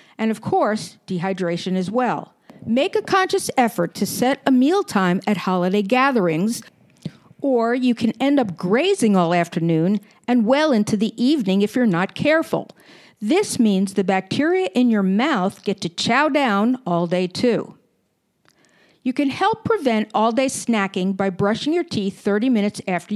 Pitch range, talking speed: 195-265 Hz, 160 wpm